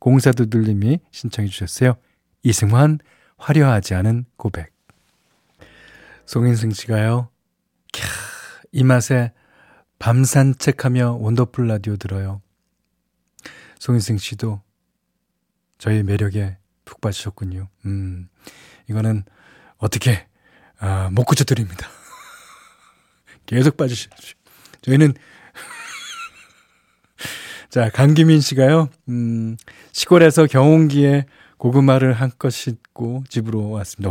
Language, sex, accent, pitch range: Korean, male, native, 105-140 Hz